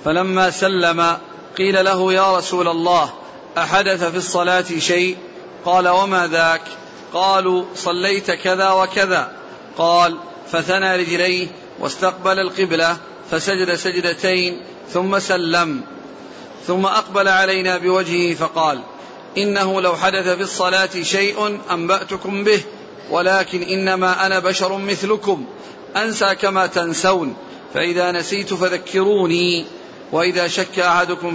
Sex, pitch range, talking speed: male, 175-195 Hz, 105 wpm